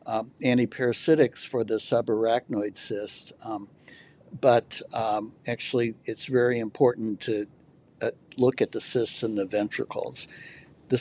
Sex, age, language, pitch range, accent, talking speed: male, 60-79, English, 110-135 Hz, American, 125 wpm